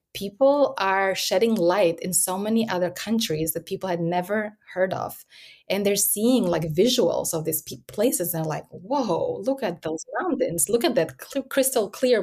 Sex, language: female, English